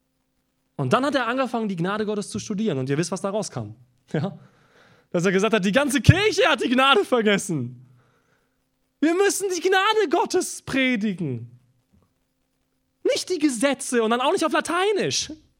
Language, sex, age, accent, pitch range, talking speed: German, male, 30-49, German, 170-285 Hz, 165 wpm